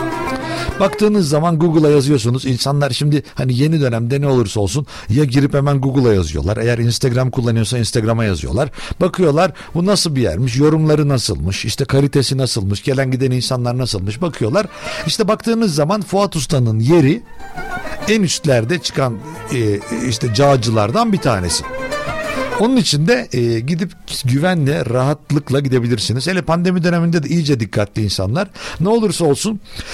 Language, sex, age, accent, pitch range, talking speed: Turkish, male, 60-79, native, 110-150 Hz, 135 wpm